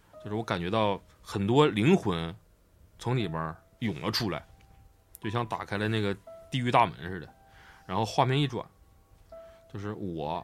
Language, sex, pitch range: Chinese, male, 95-120 Hz